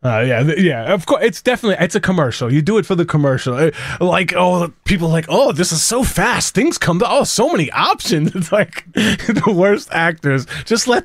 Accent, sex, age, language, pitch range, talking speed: American, male, 20-39, English, 140-185 Hz, 230 wpm